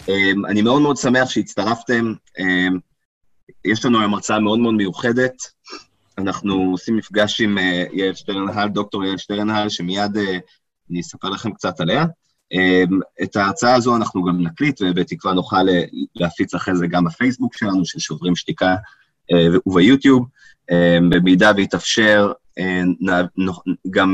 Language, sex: Hebrew, male